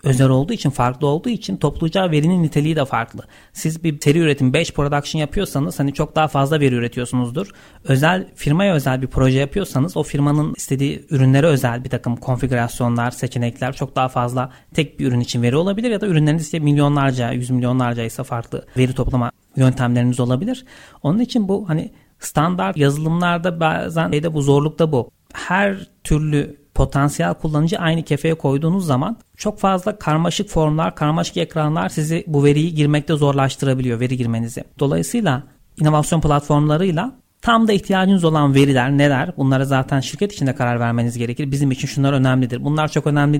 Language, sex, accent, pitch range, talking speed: Turkish, male, native, 130-160 Hz, 160 wpm